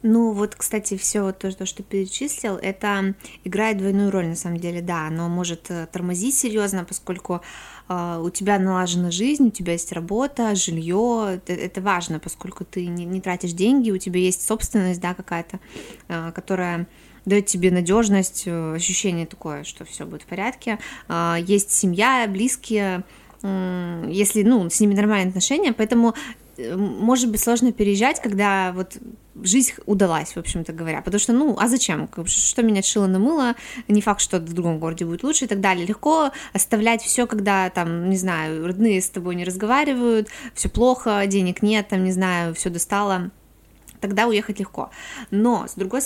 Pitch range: 180-225 Hz